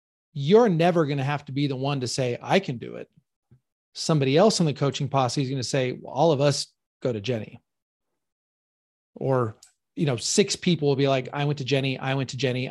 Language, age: English, 30-49